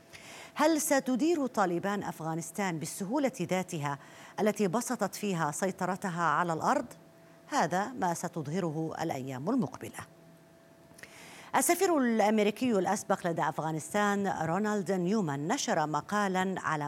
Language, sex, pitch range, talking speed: Arabic, female, 170-225 Hz, 95 wpm